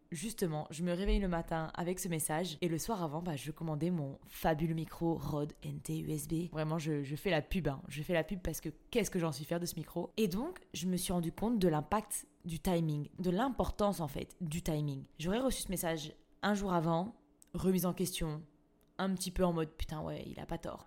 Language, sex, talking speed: French, female, 235 wpm